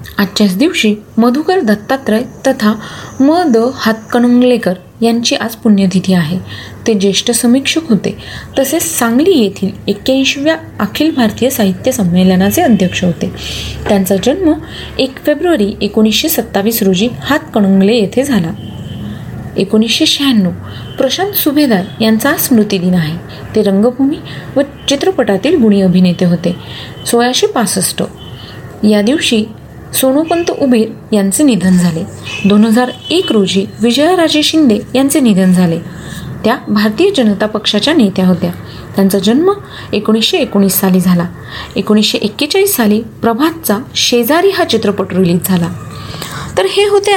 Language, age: Marathi, 30-49